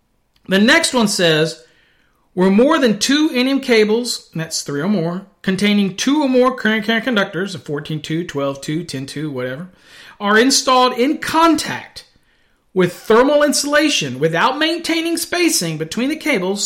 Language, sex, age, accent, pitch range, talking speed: English, male, 40-59, American, 175-255 Hz, 135 wpm